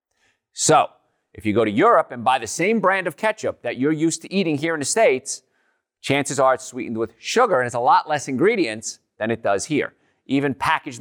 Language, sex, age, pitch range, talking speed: English, male, 40-59, 115-155 Hz, 220 wpm